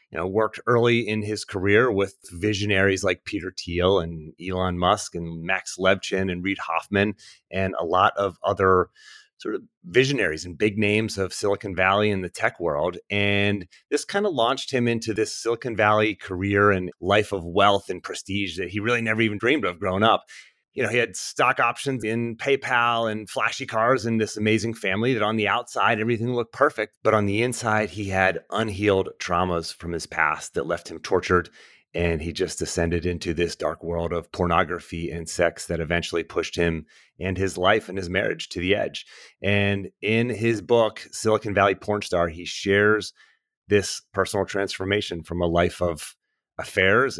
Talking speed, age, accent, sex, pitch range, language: 185 wpm, 30-49, American, male, 90-110 Hz, English